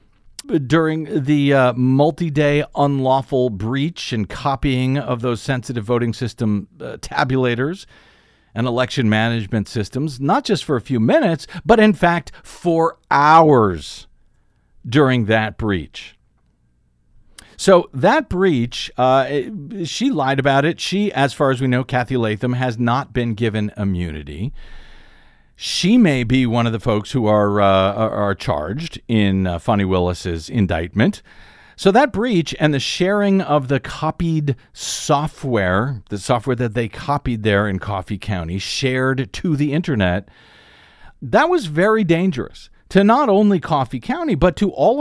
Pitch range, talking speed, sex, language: 115-165 Hz, 140 wpm, male, English